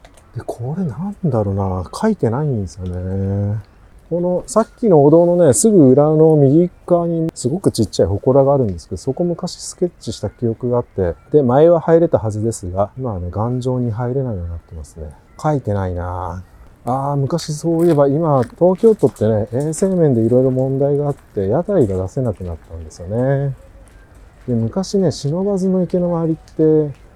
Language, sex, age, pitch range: Japanese, male, 40-59, 100-145 Hz